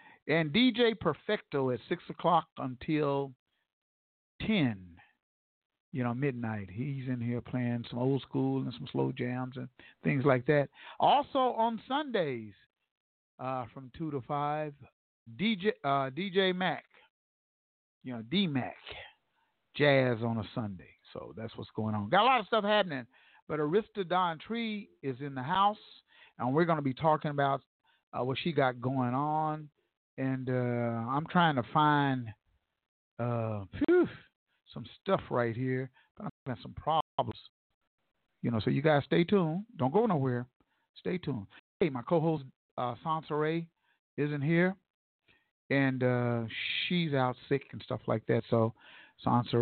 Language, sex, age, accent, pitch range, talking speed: English, male, 50-69, American, 120-165 Hz, 145 wpm